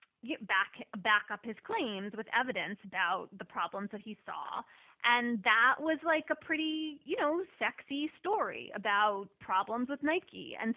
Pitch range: 210-275 Hz